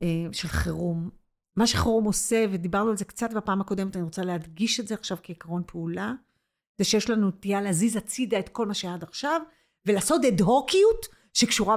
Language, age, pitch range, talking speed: Hebrew, 40-59, 200-290 Hz, 175 wpm